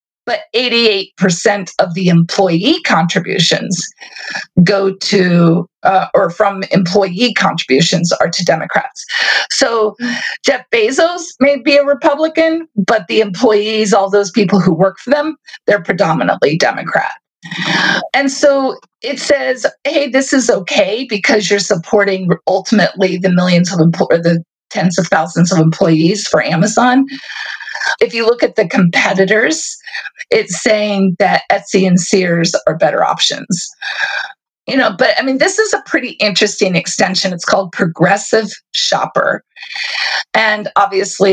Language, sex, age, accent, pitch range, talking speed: English, female, 40-59, American, 185-275 Hz, 130 wpm